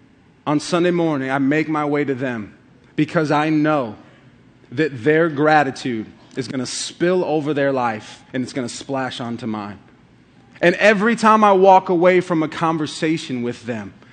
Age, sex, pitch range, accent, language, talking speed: 30-49, male, 130-180 Hz, American, English, 170 wpm